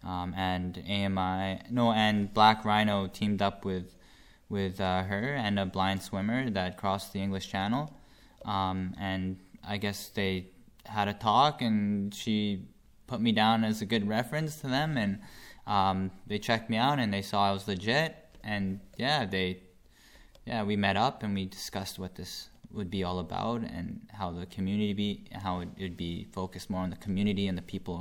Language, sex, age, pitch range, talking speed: English, male, 10-29, 90-105 Hz, 185 wpm